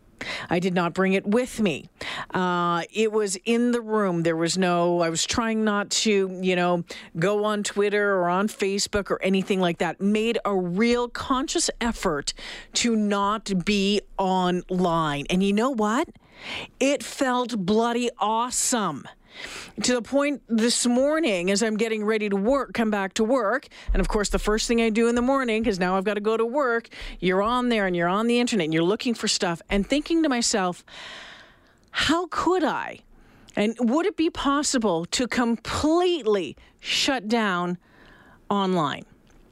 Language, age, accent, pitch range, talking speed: English, 40-59, American, 190-240 Hz, 175 wpm